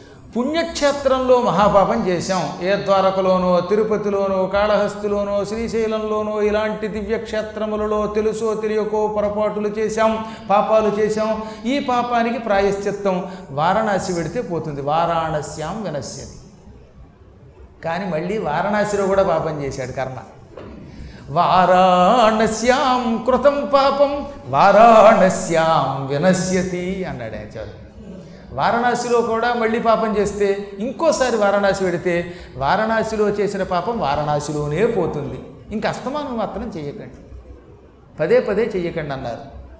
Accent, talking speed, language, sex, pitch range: native, 90 wpm, Telugu, male, 170-220 Hz